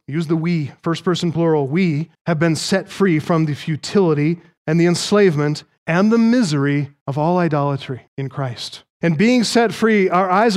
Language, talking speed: English, 175 wpm